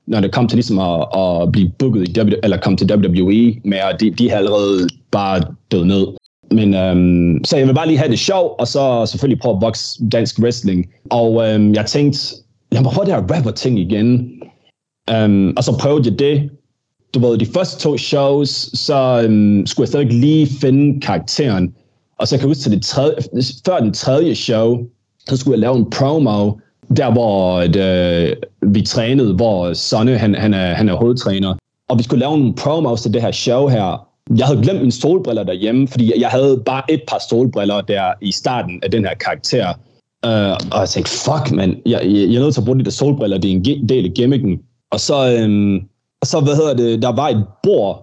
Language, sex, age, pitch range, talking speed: Danish, male, 20-39, 100-130 Hz, 205 wpm